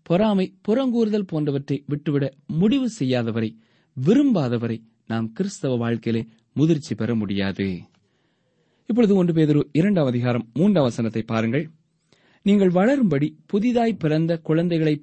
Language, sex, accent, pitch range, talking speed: Tamil, male, native, 140-200 Hz, 70 wpm